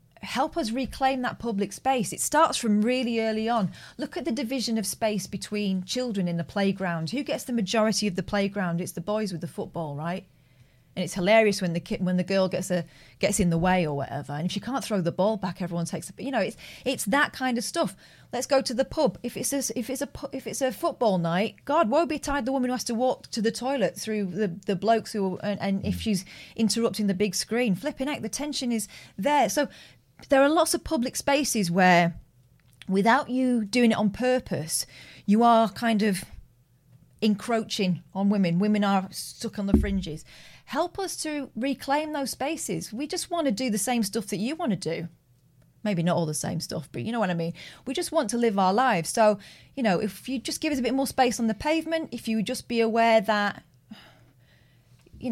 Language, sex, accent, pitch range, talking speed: English, female, British, 185-255 Hz, 225 wpm